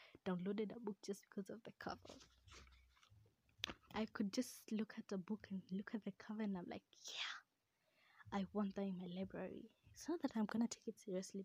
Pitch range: 190-220 Hz